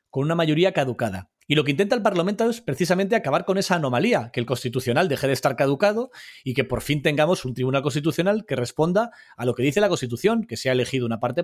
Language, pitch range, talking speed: Spanish, 120-170 Hz, 230 wpm